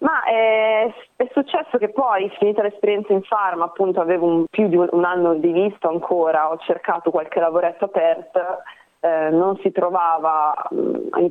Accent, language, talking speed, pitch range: native, Italian, 165 wpm, 160-205 Hz